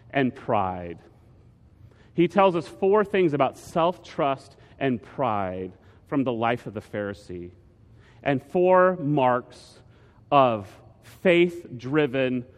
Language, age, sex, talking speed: English, 30-49, male, 105 wpm